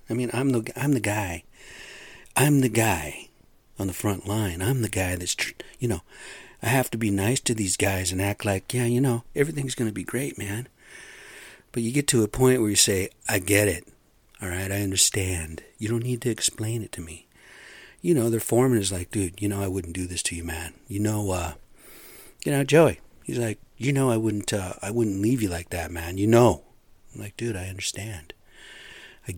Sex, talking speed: male, 220 wpm